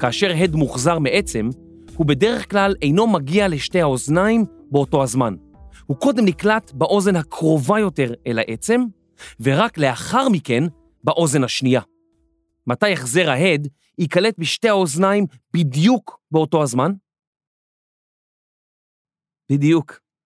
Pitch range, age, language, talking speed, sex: 135-195 Hz, 30-49, Hebrew, 105 wpm, male